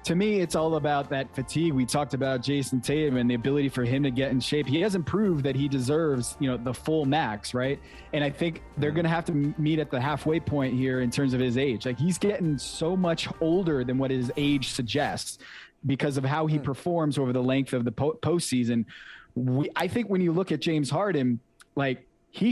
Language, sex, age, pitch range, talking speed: English, male, 20-39, 135-165 Hz, 225 wpm